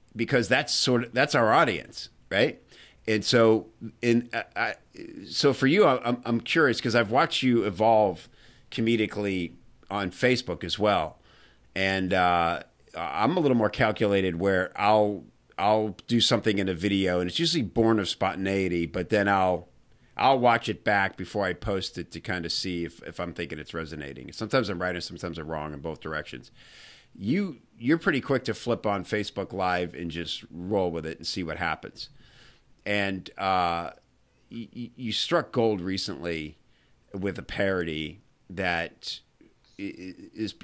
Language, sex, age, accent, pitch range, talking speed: English, male, 50-69, American, 90-115 Hz, 165 wpm